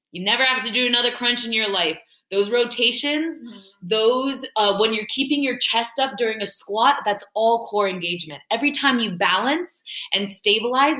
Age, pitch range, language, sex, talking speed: 20-39, 200-250 Hz, English, female, 180 wpm